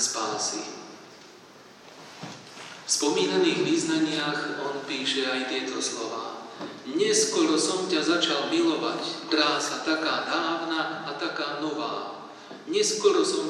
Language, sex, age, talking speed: Slovak, male, 40-59, 100 wpm